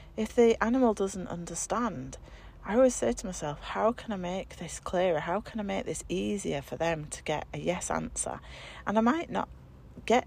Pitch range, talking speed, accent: 155-215 Hz, 200 wpm, British